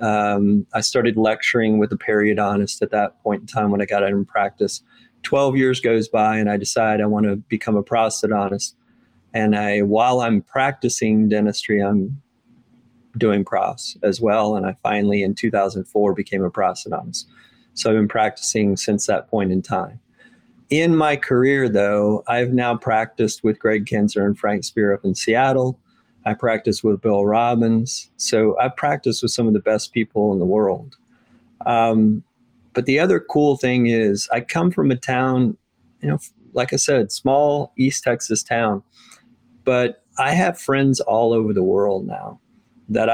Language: English